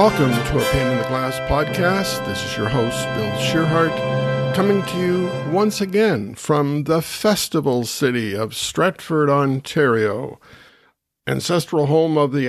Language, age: English, 50-69